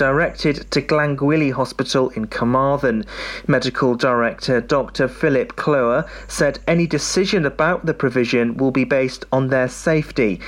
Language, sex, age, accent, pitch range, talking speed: English, male, 40-59, British, 125-165 Hz, 130 wpm